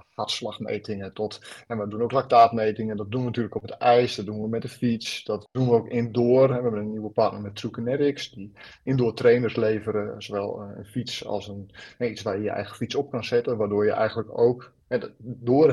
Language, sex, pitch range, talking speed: Dutch, male, 105-120 Hz, 215 wpm